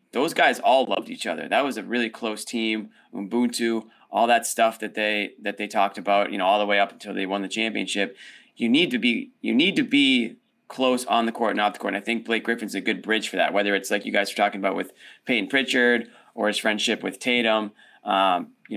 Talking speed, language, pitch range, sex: 245 wpm, English, 105-120 Hz, male